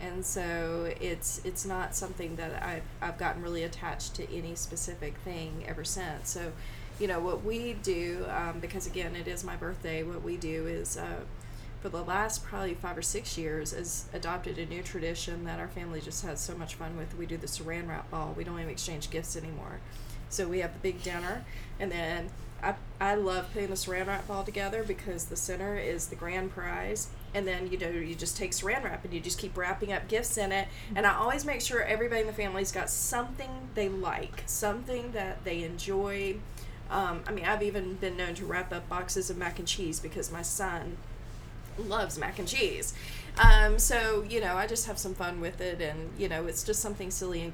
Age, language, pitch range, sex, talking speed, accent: 30-49, English, 165-195 Hz, female, 215 wpm, American